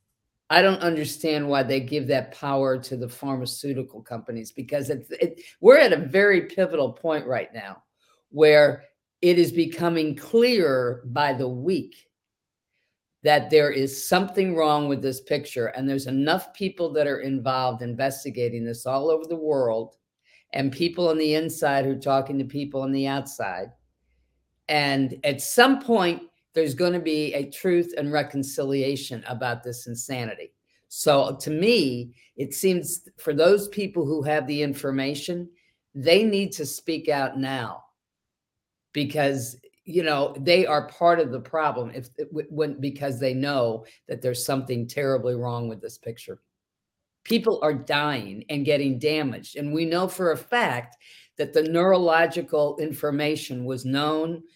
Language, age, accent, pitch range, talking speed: English, 50-69, American, 130-160 Hz, 150 wpm